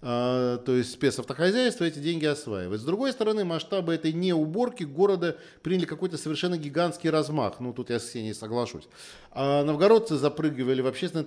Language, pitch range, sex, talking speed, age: Russian, 125-170 Hz, male, 160 wpm, 40-59